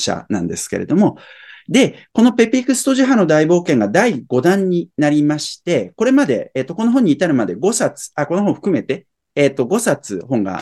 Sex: male